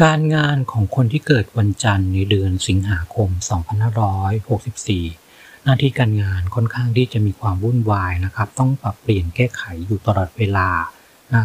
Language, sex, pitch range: Thai, male, 100-130 Hz